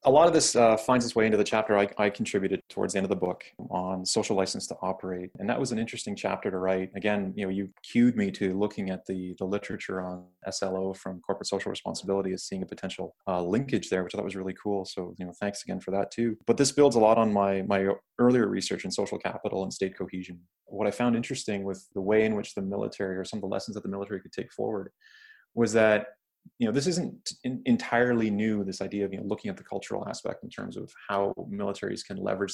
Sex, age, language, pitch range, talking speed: male, 20-39, English, 95-110 Hz, 250 wpm